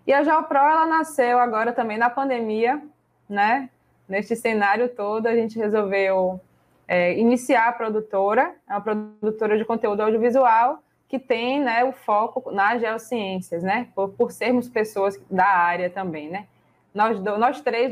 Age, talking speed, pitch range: 20-39, 150 wpm, 195-245 Hz